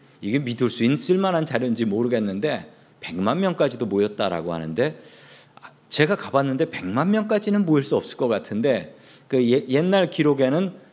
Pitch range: 110-135 Hz